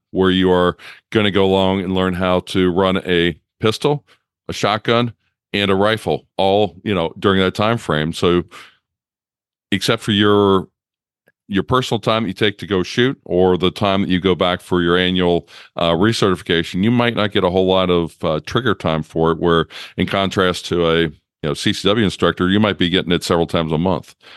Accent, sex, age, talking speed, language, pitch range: American, male, 40-59, 200 wpm, English, 90-100 Hz